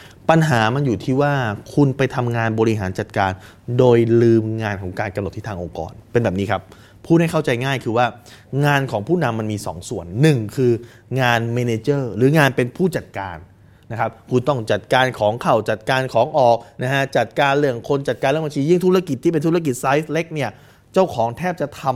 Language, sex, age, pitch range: Thai, male, 20-39, 110-145 Hz